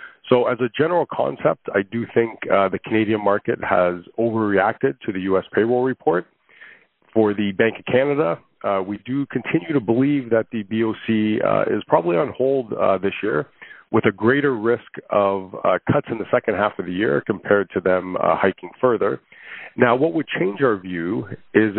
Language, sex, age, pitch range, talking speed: English, male, 40-59, 100-120 Hz, 185 wpm